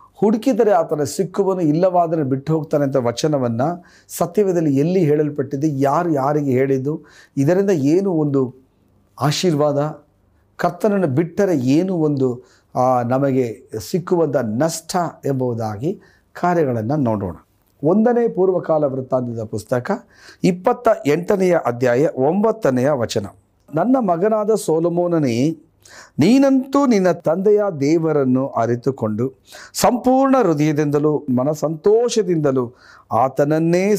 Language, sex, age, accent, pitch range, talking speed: Kannada, male, 40-59, native, 130-180 Hz, 85 wpm